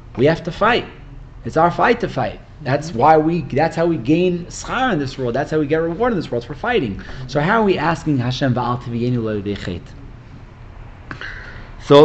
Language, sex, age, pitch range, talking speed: English, male, 20-39, 110-155 Hz, 200 wpm